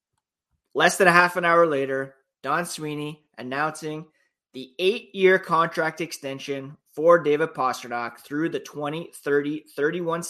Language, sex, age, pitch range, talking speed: English, male, 20-39, 135-165 Hz, 115 wpm